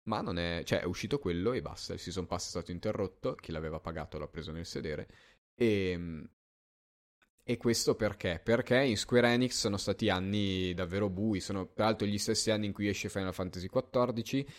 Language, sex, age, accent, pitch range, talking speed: Italian, male, 20-39, native, 90-105 Hz, 190 wpm